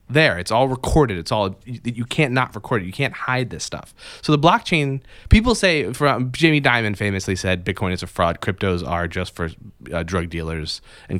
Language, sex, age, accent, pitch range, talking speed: English, male, 20-39, American, 105-150 Hz, 205 wpm